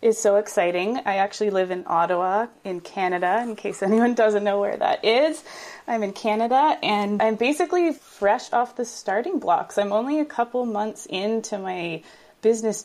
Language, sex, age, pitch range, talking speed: English, female, 20-39, 180-220 Hz, 175 wpm